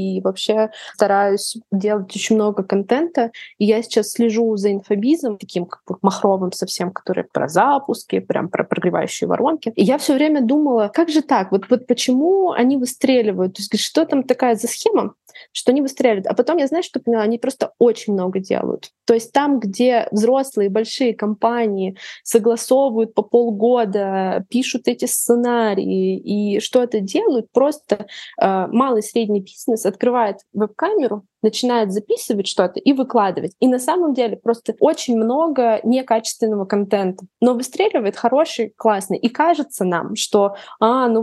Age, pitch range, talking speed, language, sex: 20-39, 205-250 Hz, 155 wpm, Russian, female